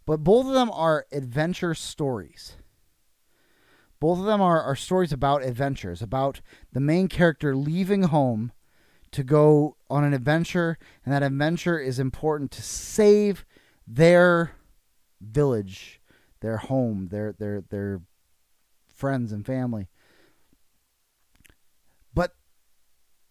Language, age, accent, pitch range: English, 30-49, American, 105-150 Hz